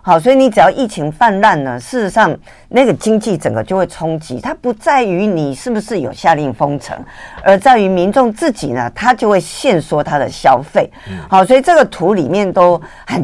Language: Chinese